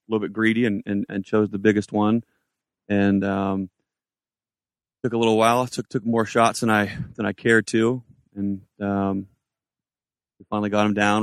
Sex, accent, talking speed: male, American, 180 wpm